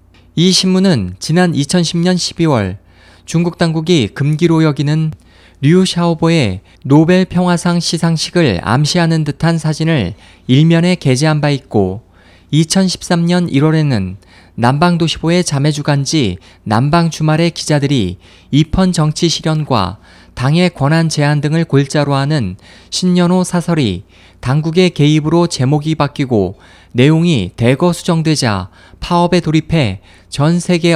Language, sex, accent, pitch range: Korean, male, native, 105-170 Hz